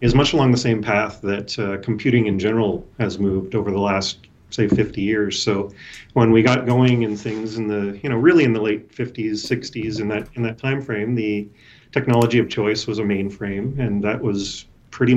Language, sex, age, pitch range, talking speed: English, male, 40-59, 100-120 Hz, 205 wpm